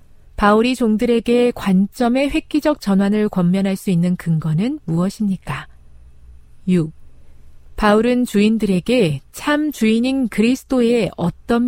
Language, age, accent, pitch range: Korean, 40-59, native, 160-235 Hz